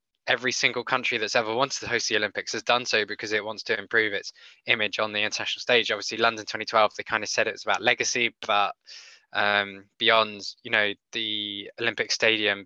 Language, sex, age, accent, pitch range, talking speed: English, male, 10-29, British, 105-125 Hz, 200 wpm